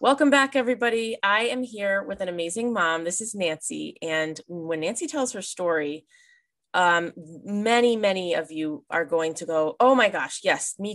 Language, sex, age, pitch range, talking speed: English, female, 20-39, 165-230 Hz, 180 wpm